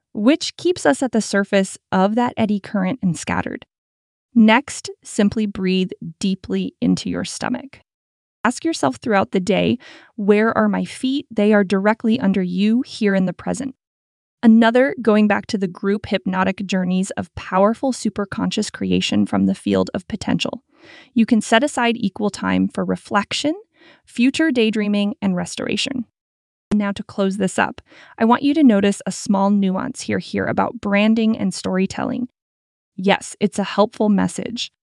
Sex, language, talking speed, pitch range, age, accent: female, English, 155 wpm, 195-240 Hz, 20-39, American